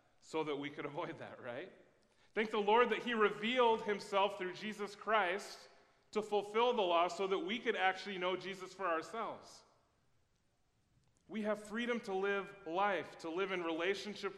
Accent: American